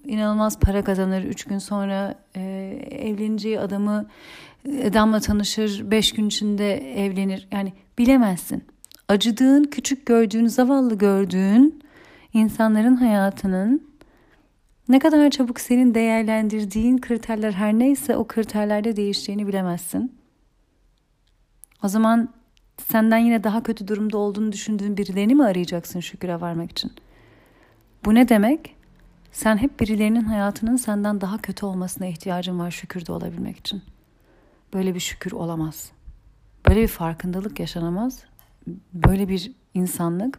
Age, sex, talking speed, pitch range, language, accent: 40-59, female, 115 wpm, 195-240 Hz, Turkish, native